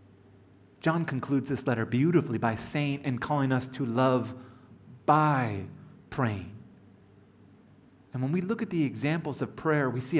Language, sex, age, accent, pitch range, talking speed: English, male, 30-49, American, 120-150 Hz, 145 wpm